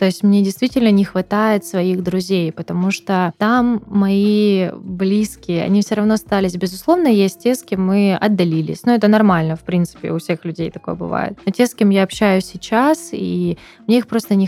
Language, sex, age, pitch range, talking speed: Russian, female, 20-39, 175-205 Hz, 195 wpm